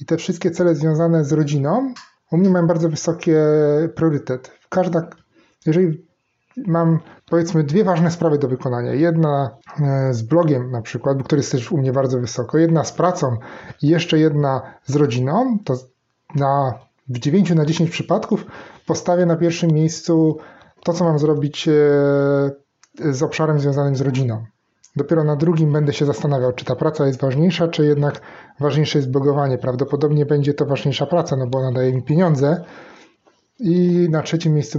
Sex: male